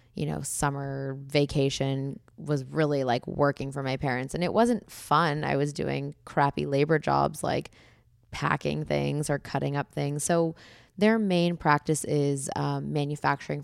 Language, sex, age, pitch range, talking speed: English, female, 20-39, 135-155 Hz, 155 wpm